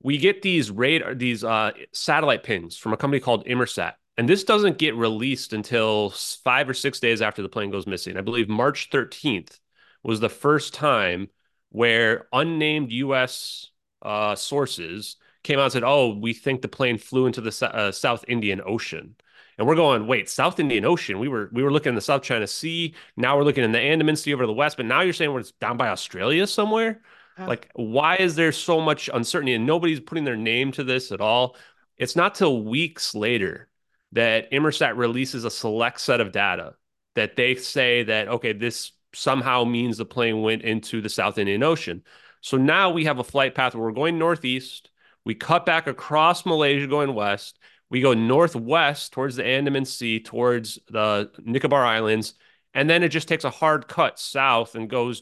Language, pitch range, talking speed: English, 115-145 Hz, 195 wpm